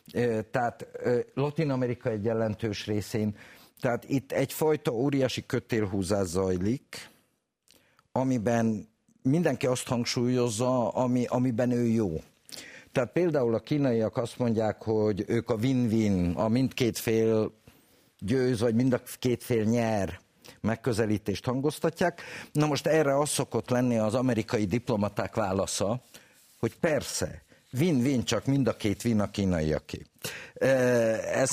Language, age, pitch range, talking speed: Hungarian, 50-69, 105-130 Hz, 105 wpm